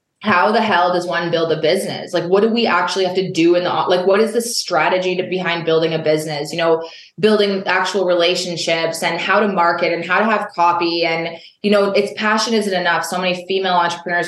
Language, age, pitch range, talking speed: English, 20-39, 170-195 Hz, 220 wpm